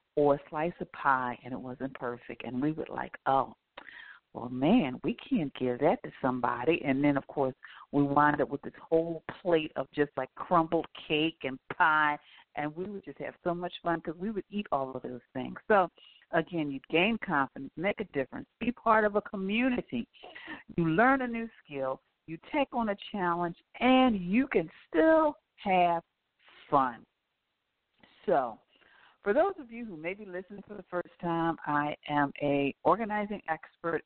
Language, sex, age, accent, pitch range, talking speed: English, female, 50-69, American, 140-185 Hz, 180 wpm